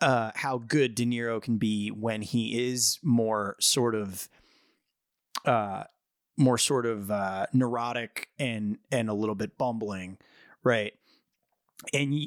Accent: American